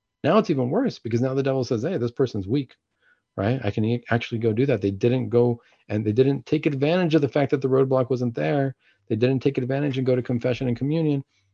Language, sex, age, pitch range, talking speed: English, male, 40-59, 105-140 Hz, 240 wpm